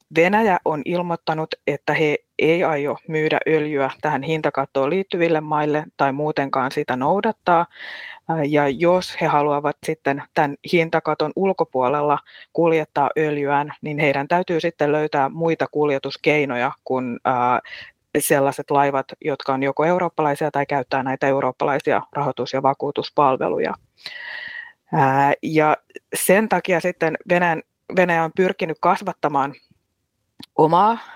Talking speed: 110 wpm